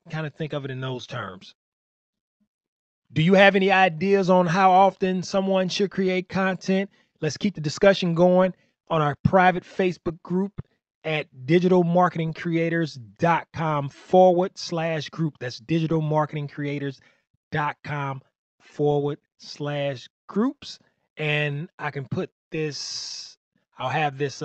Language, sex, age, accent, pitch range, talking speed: English, male, 30-49, American, 125-175 Hz, 135 wpm